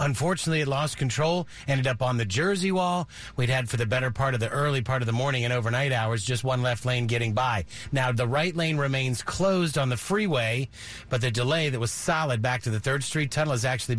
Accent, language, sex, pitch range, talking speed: American, English, male, 115-140 Hz, 235 wpm